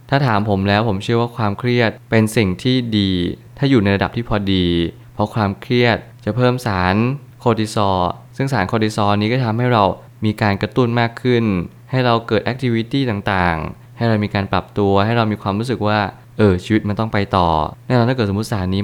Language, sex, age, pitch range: Thai, male, 20-39, 100-120 Hz